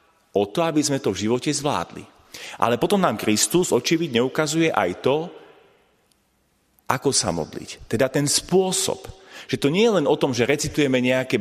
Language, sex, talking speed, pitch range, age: Slovak, male, 170 wpm, 110-155 Hz, 40-59